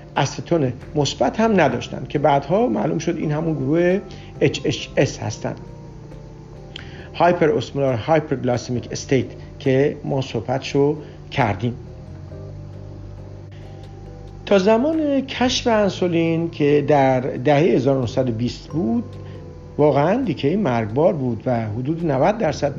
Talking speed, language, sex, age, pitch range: 95 wpm, Persian, male, 50-69, 125-160 Hz